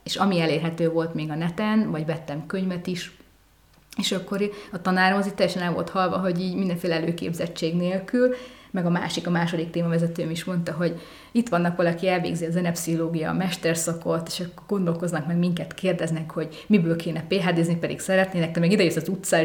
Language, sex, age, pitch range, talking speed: Hungarian, female, 30-49, 160-190 Hz, 185 wpm